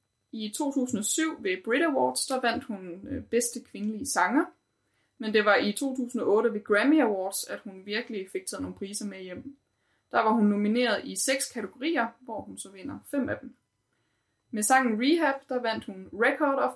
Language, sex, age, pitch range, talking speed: Danish, female, 20-39, 195-260 Hz, 180 wpm